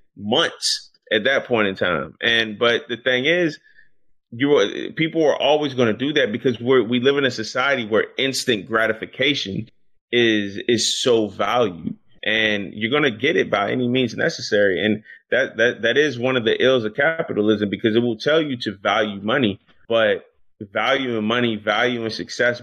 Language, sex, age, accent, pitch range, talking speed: English, male, 30-49, American, 105-130 Hz, 185 wpm